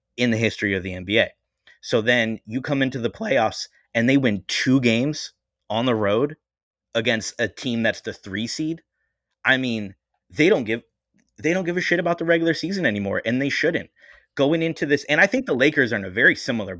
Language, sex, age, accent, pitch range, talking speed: English, male, 20-39, American, 100-125 Hz, 210 wpm